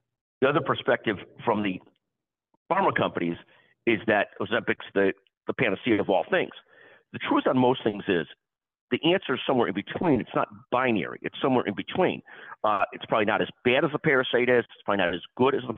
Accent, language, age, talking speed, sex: American, English, 50-69, 200 wpm, male